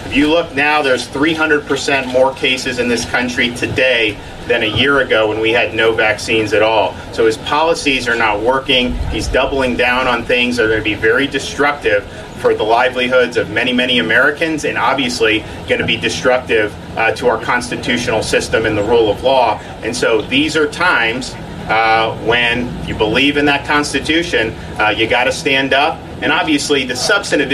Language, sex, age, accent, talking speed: English, male, 40-59, American, 185 wpm